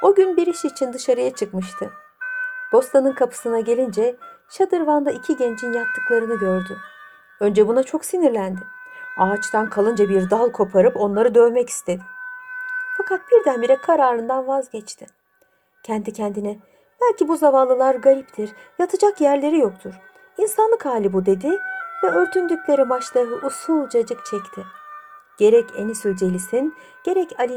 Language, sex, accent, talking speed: Turkish, female, native, 120 wpm